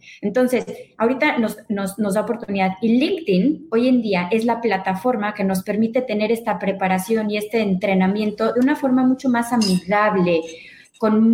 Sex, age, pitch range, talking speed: female, 20-39, 190-250 Hz, 160 wpm